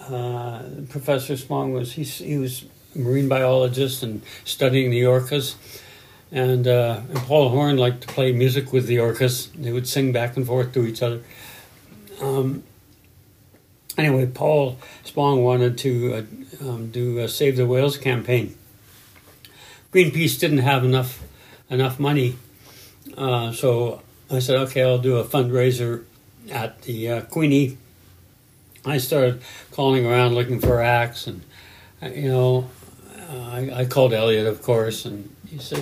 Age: 60-79